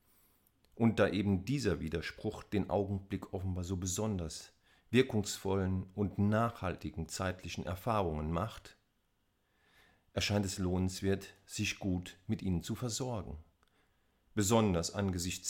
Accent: German